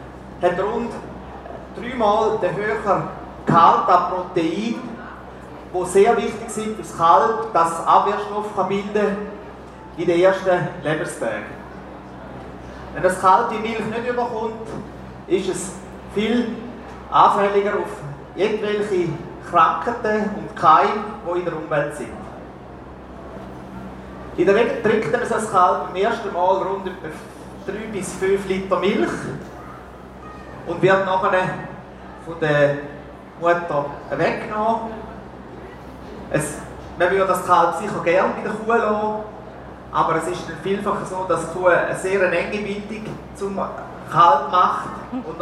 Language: German